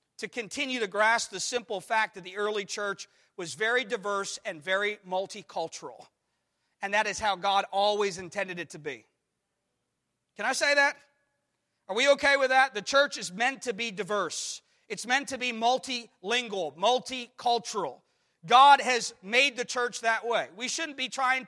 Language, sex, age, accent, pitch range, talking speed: English, male, 40-59, American, 200-270 Hz, 170 wpm